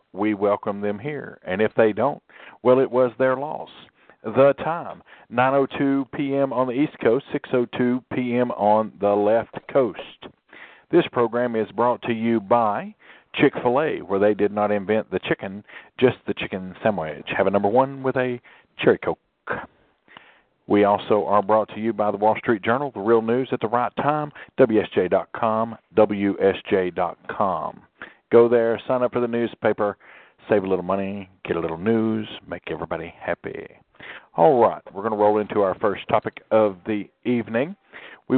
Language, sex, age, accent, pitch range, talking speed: English, male, 50-69, American, 105-125 Hz, 165 wpm